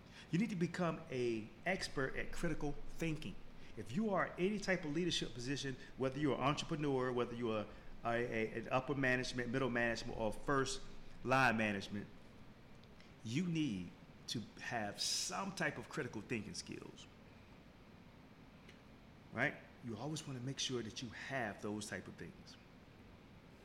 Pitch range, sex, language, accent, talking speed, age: 120-175 Hz, male, English, American, 145 wpm, 40-59